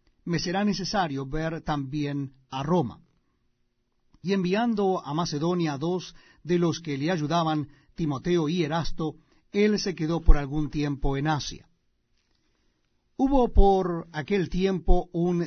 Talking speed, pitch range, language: 130 wpm, 155-205 Hz, Spanish